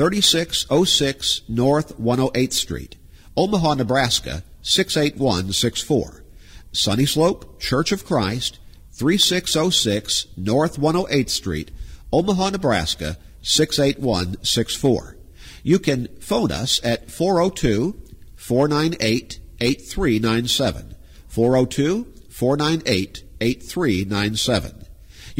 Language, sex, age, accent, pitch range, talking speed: English, male, 50-69, American, 95-155 Hz, 60 wpm